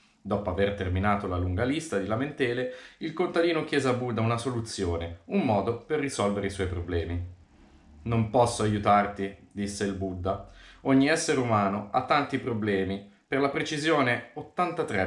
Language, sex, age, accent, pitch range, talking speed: Italian, male, 30-49, native, 95-125 Hz, 150 wpm